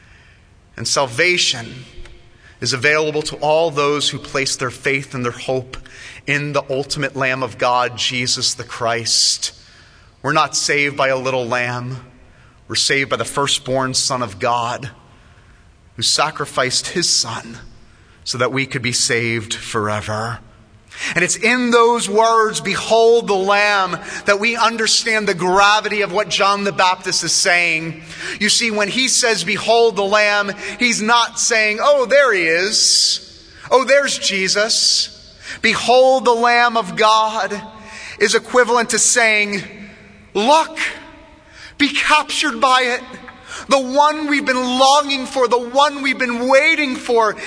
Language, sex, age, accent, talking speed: English, male, 30-49, American, 145 wpm